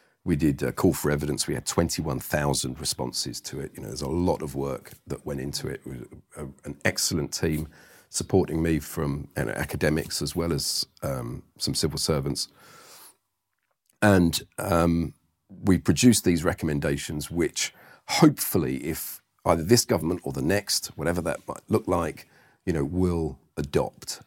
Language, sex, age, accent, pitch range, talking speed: English, male, 40-59, British, 75-95 Hz, 155 wpm